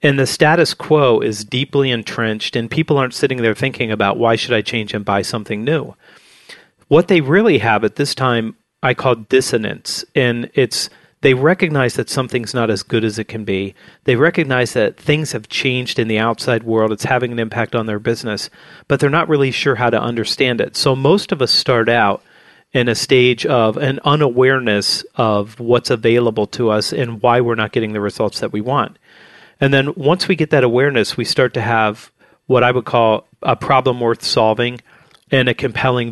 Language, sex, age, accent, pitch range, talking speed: English, male, 40-59, American, 110-135 Hz, 200 wpm